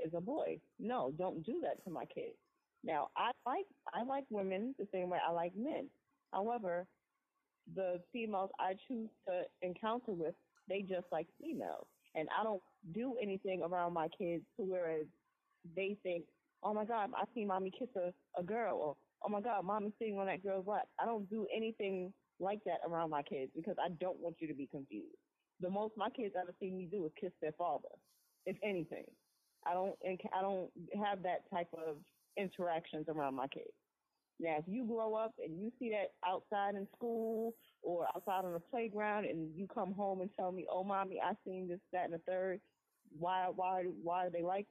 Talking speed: 200 wpm